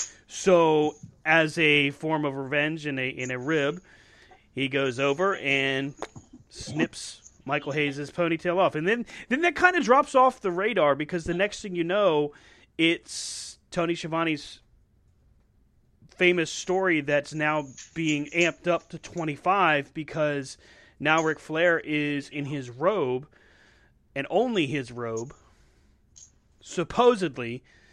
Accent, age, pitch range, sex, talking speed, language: American, 30-49, 135-175 Hz, male, 130 wpm, English